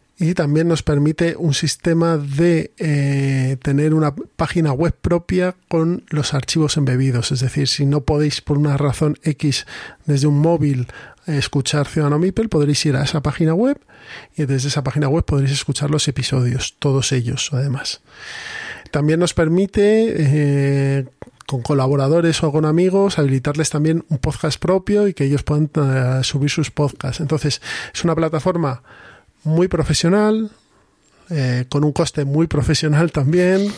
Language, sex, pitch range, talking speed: Spanish, male, 140-170 Hz, 155 wpm